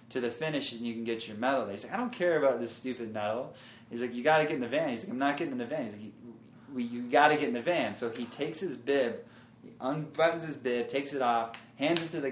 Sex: male